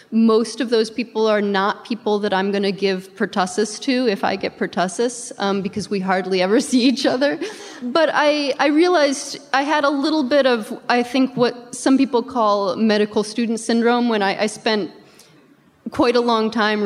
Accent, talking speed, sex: American, 190 wpm, female